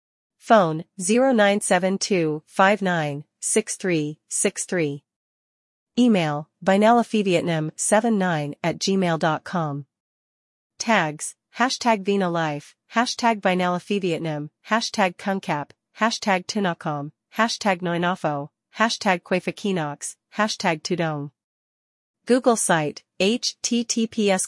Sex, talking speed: female, 85 wpm